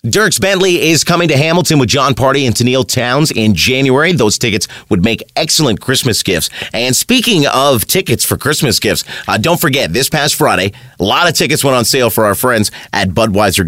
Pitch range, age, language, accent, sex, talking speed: 105-150 Hz, 30-49, English, American, male, 200 wpm